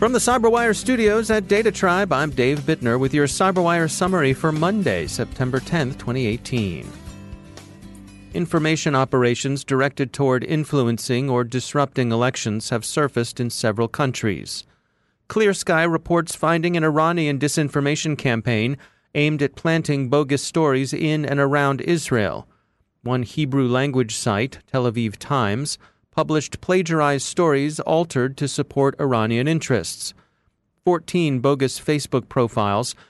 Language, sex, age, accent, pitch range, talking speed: English, male, 40-59, American, 120-155 Hz, 120 wpm